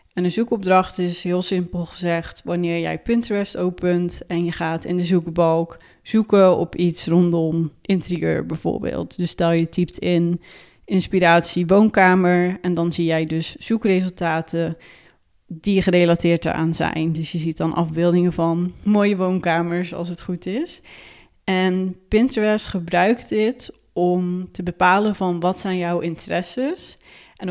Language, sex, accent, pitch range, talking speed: Dutch, female, Dutch, 170-185 Hz, 140 wpm